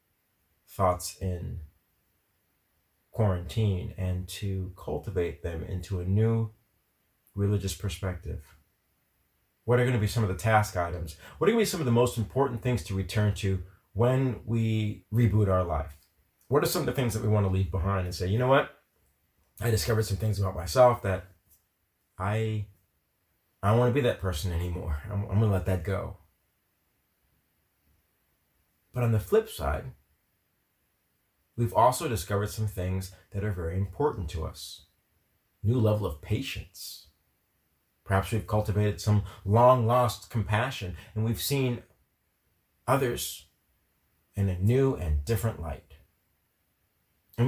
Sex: male